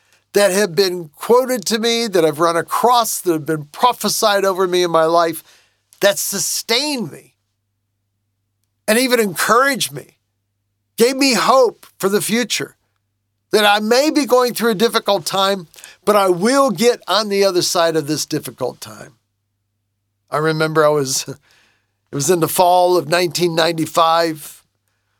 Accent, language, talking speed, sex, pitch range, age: American, English, 150 wpm, male, 125-195 Hz, 50-69